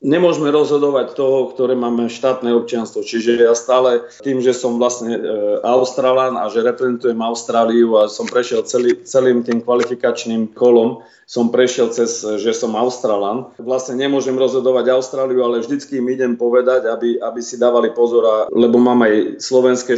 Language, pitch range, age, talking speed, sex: Slovak, 115-130 Hz, 40-59, 155 wpm, male